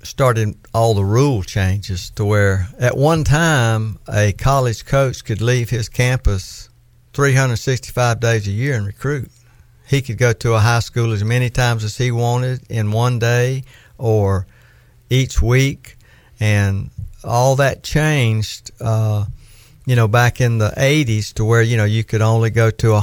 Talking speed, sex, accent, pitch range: 165 wpm, male, American, 105-120 Hz